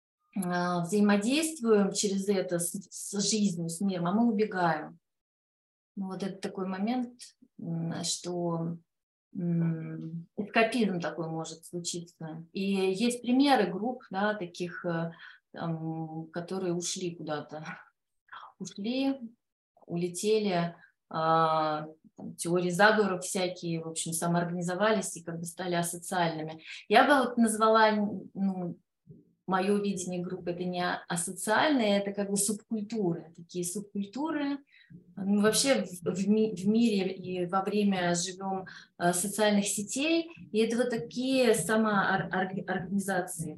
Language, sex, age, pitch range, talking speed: Russian, female, 20-39, 170-215 Hz, 115 wpm